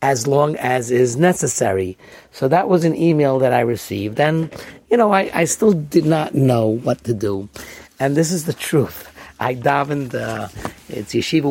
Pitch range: 115-140 Hz